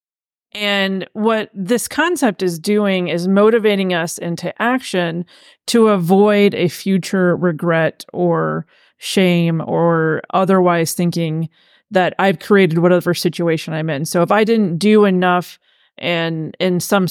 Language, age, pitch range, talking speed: English, 30-49, 175-210 Hz, 130 wpm